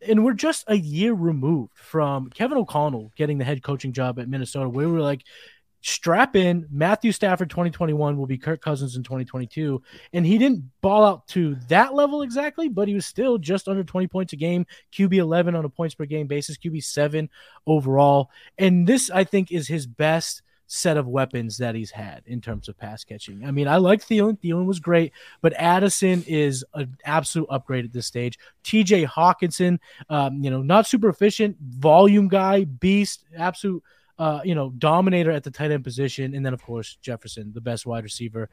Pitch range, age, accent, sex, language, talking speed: 135-185 Hz, 20-39, American, male, English, 195 wpm